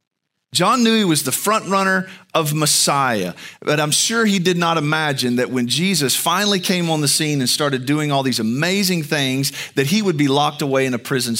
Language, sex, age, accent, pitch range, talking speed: English, male, 40-59, American, 135-200 Hz, 210 wpm